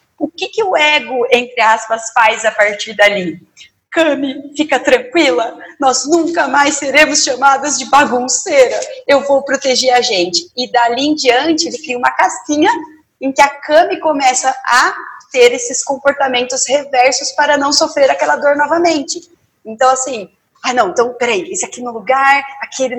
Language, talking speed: Portuguese, 160 wpm